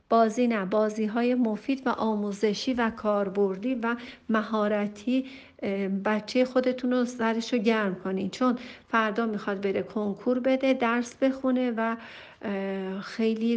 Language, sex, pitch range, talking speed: Persian, female, 205-245 Hz, 125 wpm